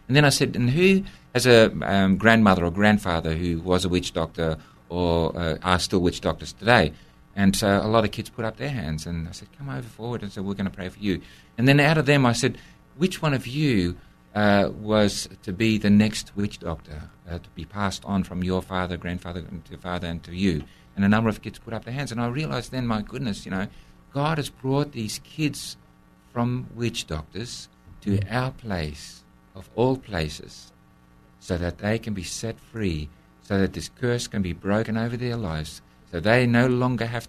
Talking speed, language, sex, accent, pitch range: 220 wpm, English, male, Australian, 85-115 Hz